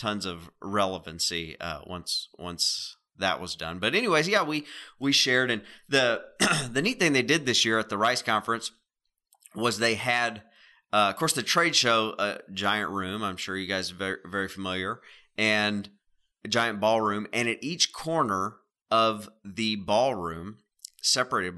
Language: English